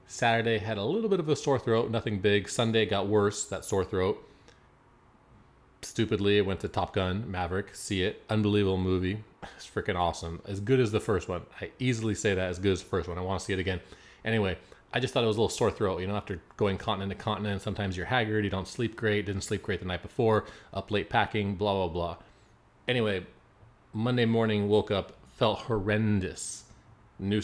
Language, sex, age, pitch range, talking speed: English, male, 30-49, 95-110 Hz, 210 wpm